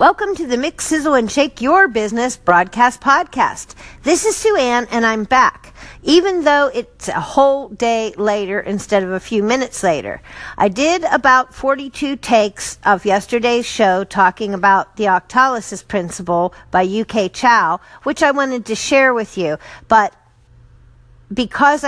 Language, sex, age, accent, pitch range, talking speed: English, female, 50-69, American, 190-255 Hz, 155 wpm